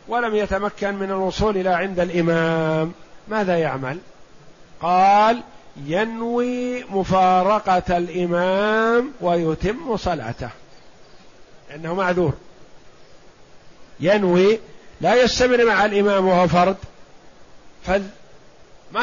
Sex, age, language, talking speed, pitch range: male, 50-69, Arabic, 80 wpm, 175-210 Hz